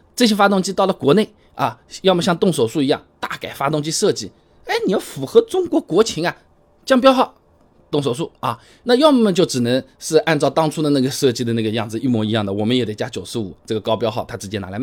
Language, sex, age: Chinese, male, 20-39